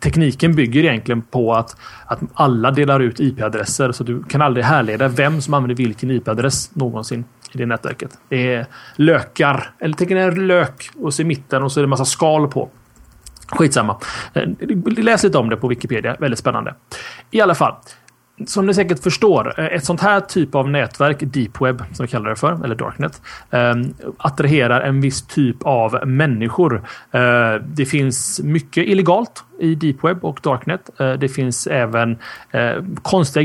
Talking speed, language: 165 wpm, Swedish